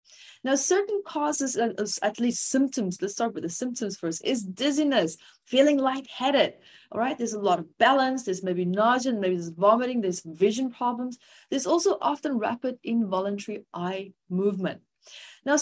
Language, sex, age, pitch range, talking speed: English, female, 30-49, 200-275 Hz, 160 wpm